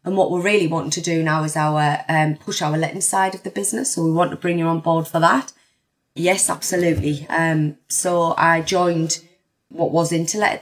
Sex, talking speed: female, 215 wpm